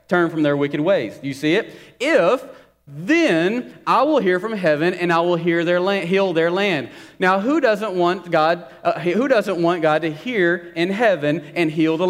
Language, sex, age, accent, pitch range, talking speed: English, male, 30-49, American, 140-175 Hz, 175 wpm